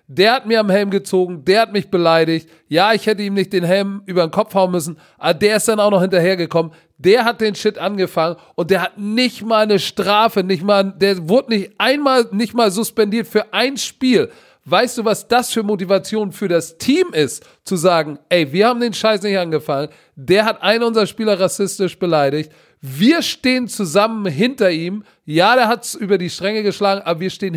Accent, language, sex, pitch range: German, German, male, 180-225 Hz